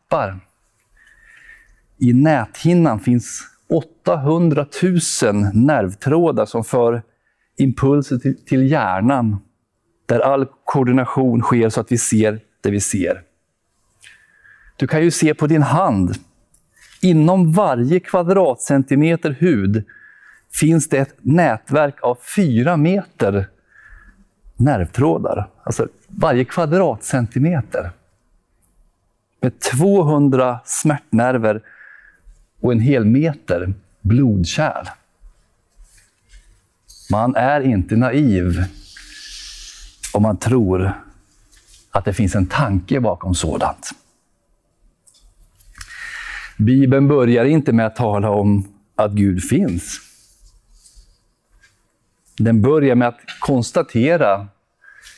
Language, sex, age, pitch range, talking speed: Swedish, male, 50-69, 100-150 Hz, 90 wpm